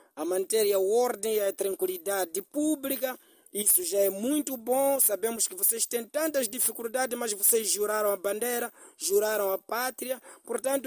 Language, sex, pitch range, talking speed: Portuguese, male, 220-295 Hz, 155 wpm